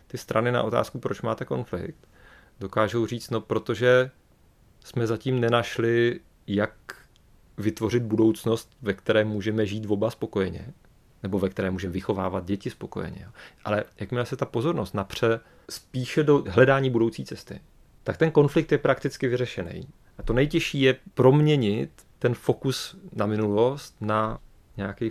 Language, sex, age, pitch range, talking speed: Czech, male, 30-49, 100-125 Hz, 140 wpm